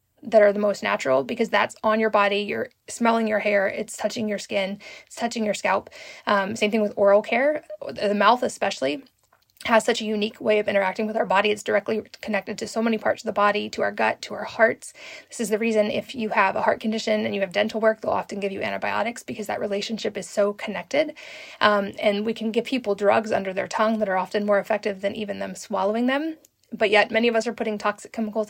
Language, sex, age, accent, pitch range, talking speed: English, female, 20-39, American, 205-230 Hz, 235 wpm